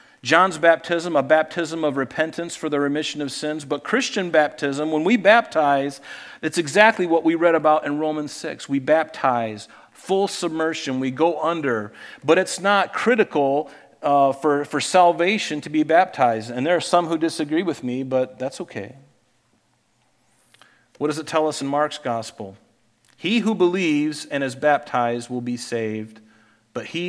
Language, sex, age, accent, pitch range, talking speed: English, male, 40-59, American, 125-165 Hz, 165 wpm